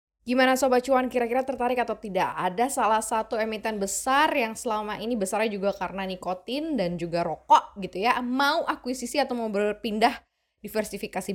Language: Indonesian